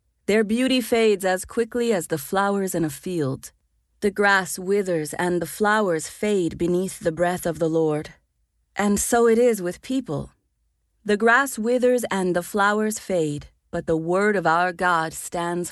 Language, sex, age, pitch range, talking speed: English, female, 30-49, 155-215 Hz, 170 wpm